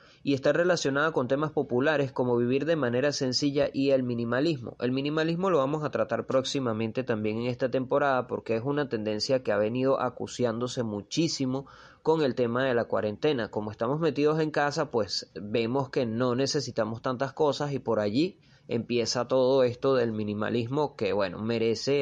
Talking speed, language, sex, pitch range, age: 170 wpm, Spanish, male, 115-140 Hz, 20-39